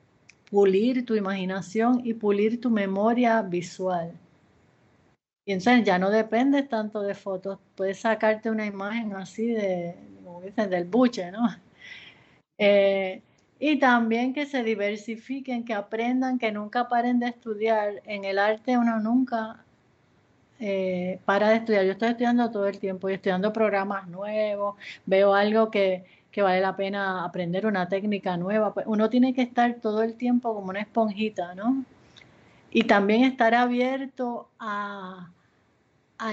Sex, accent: female, American